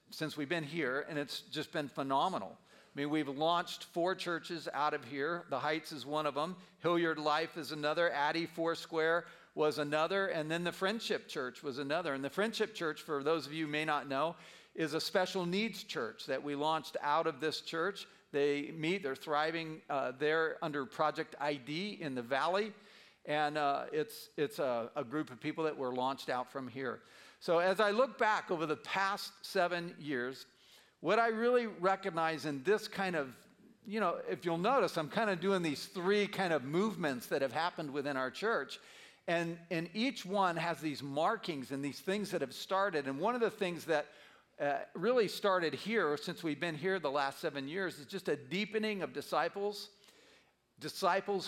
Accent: American